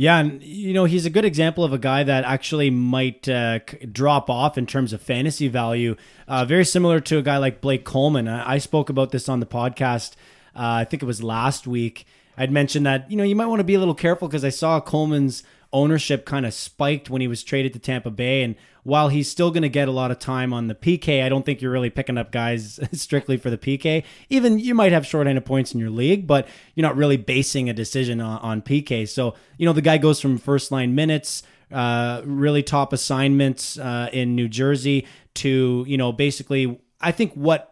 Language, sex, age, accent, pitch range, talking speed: English, male, 20-39, American, 125-150 Hz, 230 wpm